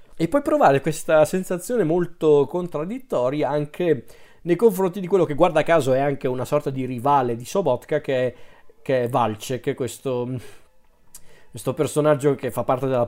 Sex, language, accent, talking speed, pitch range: male, Italian, native, 160 wpm, 130-155 Hz